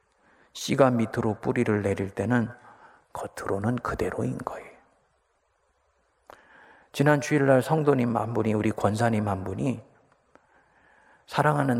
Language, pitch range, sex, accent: Korean, 110-135 Hz, male, native